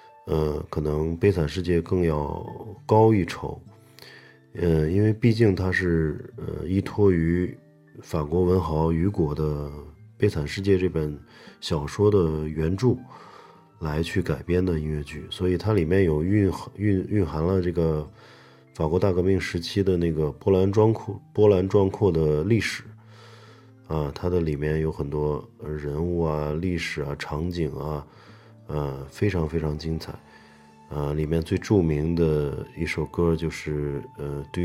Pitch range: 75-100 Hz